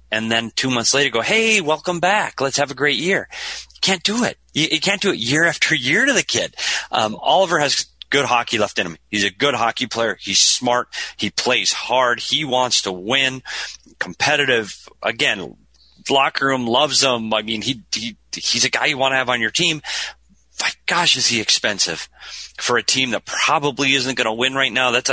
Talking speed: 210 wpm